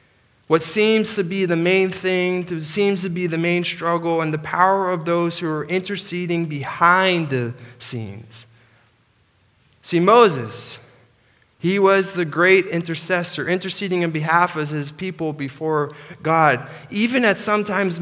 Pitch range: 150-200 Hz